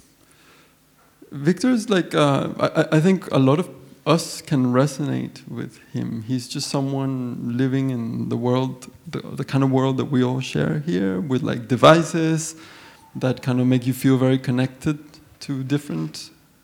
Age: 30-49